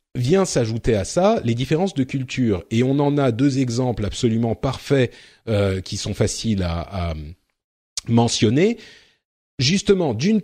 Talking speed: 145 wpm